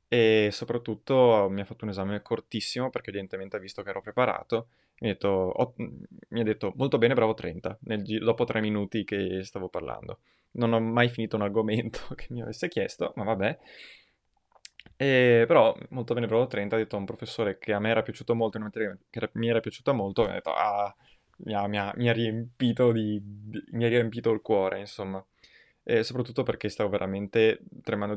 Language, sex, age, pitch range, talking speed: Italian, male, 20-39, 100-115 Hz, 185 wpm